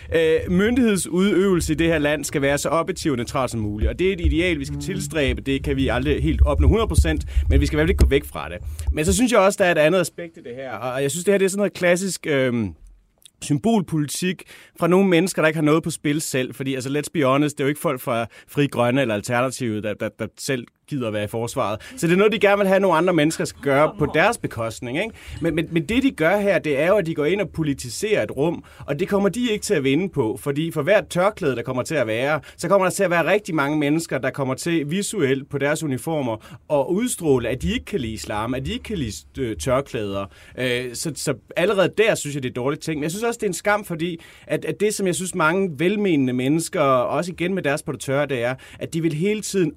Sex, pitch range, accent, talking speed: male, 130-180 Hz, native, 270 wpm